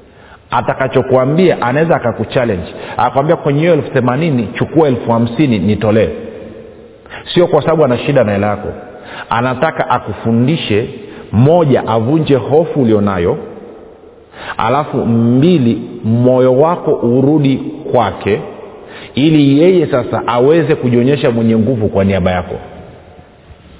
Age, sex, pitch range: 50-69, male, 115-155 Hz